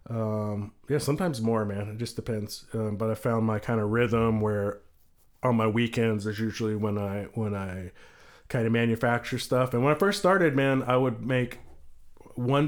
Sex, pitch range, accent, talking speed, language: male, 110-125 Hz, American, 190 wpm, English